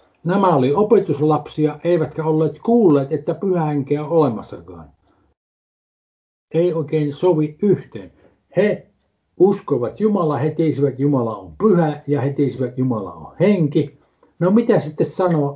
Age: 60-79